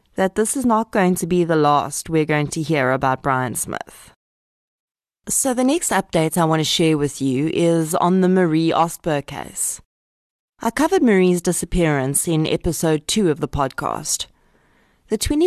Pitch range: 155-190 Hz